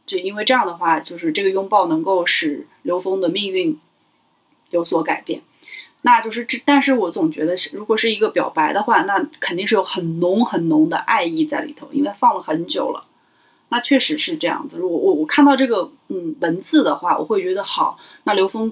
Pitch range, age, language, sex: 200-325 Hz, 30-49, Chinese, female